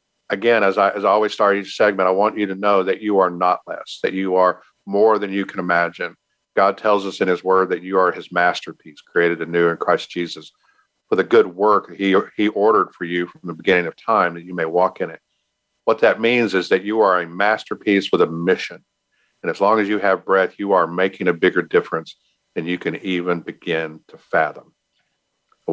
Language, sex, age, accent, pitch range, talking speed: English, male, 50-69, American, 90-105 Hz, 225 wpm